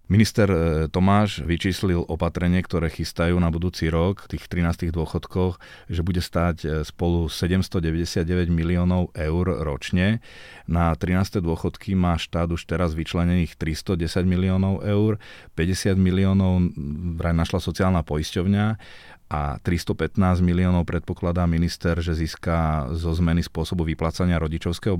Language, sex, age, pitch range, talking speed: Slovak, male, 30-49, 80-95 Hz, 120 wpm